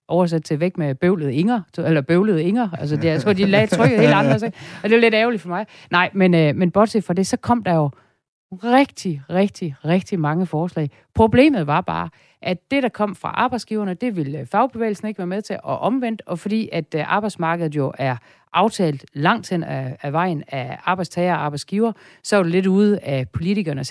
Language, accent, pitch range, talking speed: Danish, native, 155-200 Hz, 200 wpm